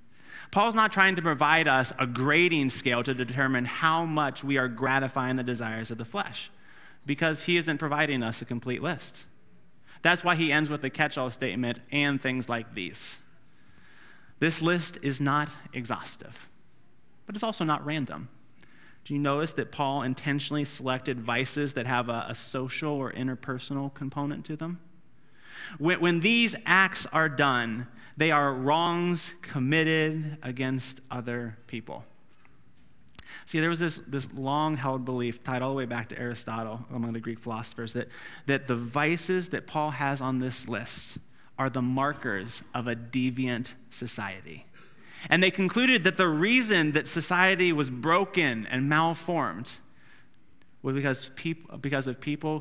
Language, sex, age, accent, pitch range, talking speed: English, male, 30-49, American, 125-160 Hz, 150 wpm